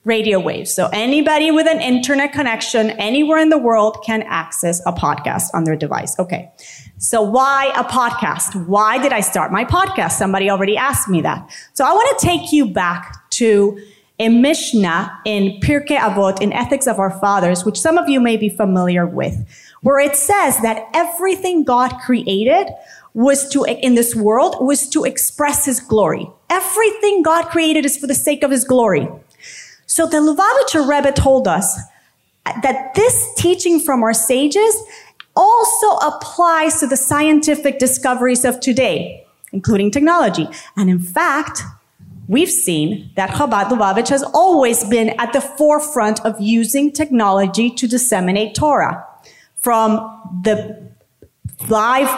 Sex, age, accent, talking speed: female, 30-49, American, 150 wpm